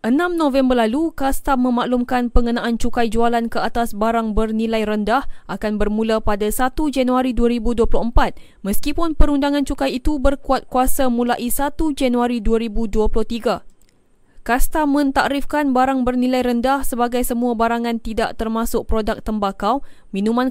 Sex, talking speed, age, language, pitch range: female, 125 wpm, 20-39, Malay, 225-265 Hz